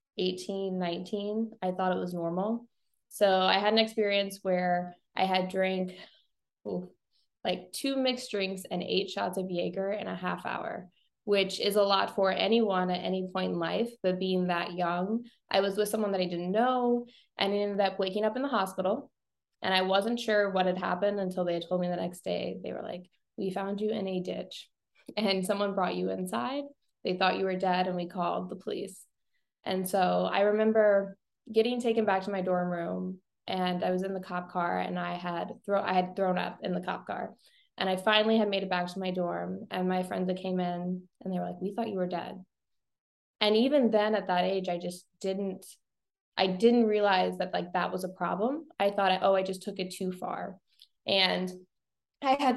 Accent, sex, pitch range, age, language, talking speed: American, female, 180-210 Hz, 20-39, English, 210 wpm